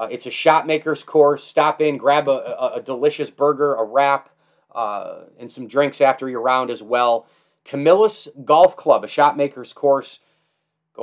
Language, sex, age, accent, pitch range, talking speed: English, male, 30-49, American, 130-155 Hz, 170 wpm